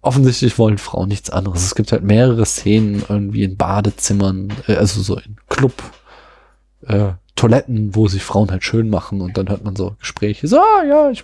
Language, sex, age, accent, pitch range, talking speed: German, male, 20-39, German, 105-140 Hz, 185 wpm